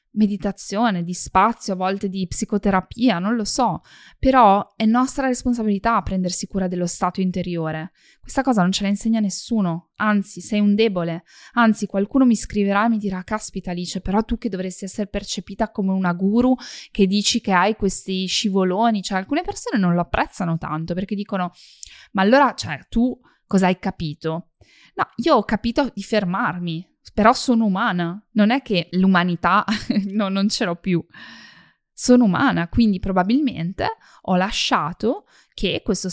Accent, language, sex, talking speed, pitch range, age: native, Italian, female, 160 wpm, 175-225 Hz, 20-39